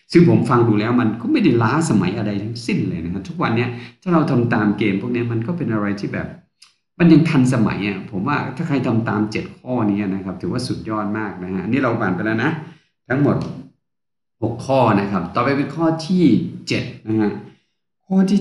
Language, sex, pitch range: Thai, male, 90-125 Hz